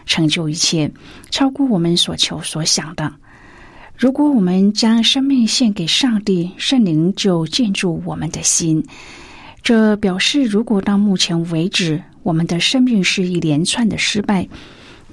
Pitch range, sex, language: 170-215 Hz, female, Chinese